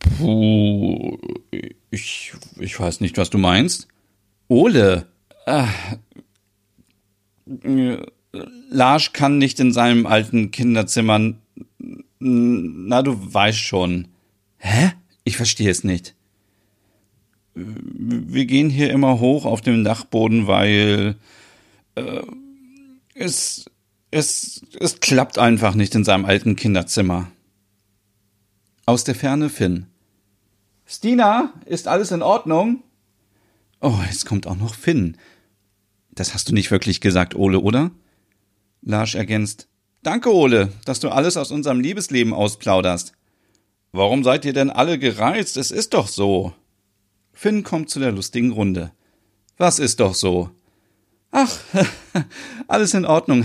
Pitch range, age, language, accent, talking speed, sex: 100-130 Hz, 40-59, German, German, 115 wpm, male